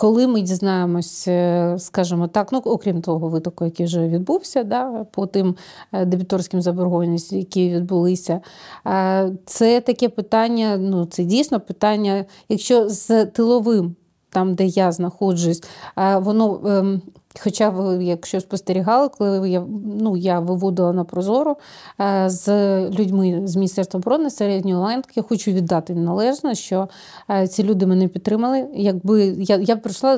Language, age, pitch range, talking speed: Ukrainian, 30-49, 185-220 Hz, 125 wpm